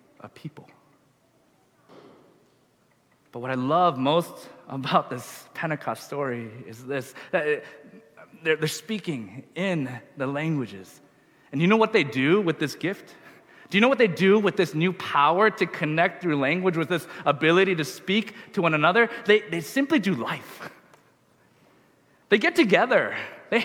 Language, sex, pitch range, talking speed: English, male, 185-265 Hz, 145 wpm